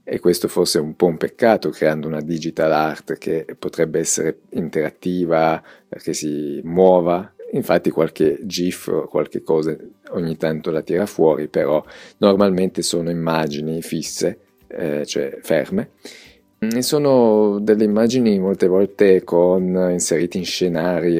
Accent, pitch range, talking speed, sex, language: native, 85-100 Hz, 130 wpm, male, Italian